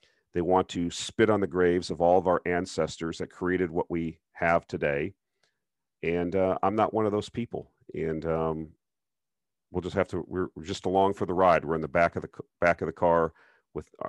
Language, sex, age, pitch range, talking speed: English, male, 40-59, 85-105 Hz, 215 wpm